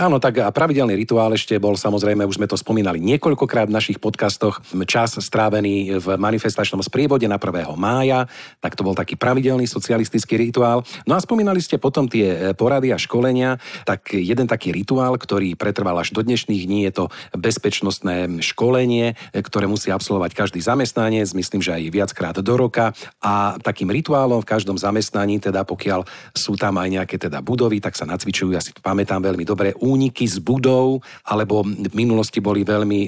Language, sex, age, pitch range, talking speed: Slovak, male, 40-59, 100-125 Hz, 170 wpm